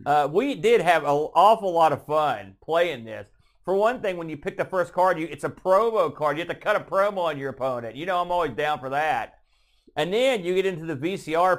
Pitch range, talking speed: 135-180 Hz, 250 wpm